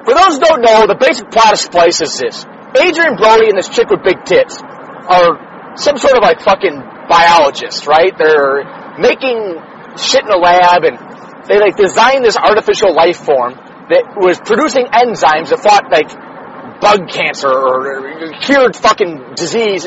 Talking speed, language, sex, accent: 165 wpm, English, male, American